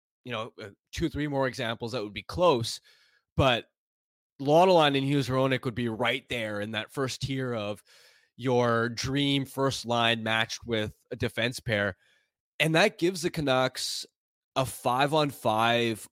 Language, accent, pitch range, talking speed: English, American, 115-140 Hz, 150 wpm